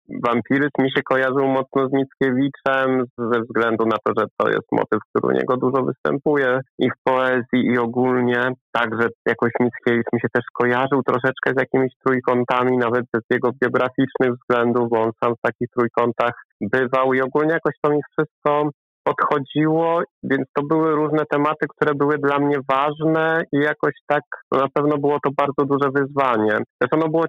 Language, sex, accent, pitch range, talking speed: Polish, male, native, 120-140 Hz, 170 wpm